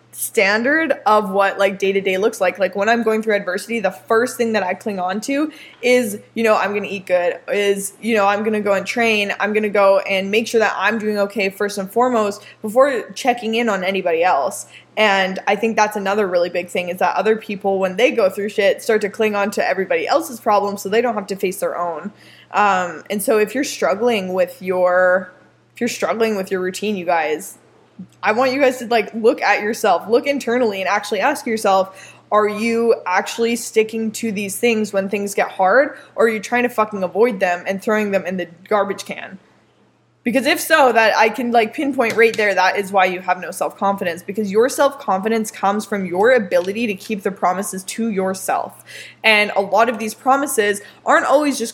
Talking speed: 215 wpm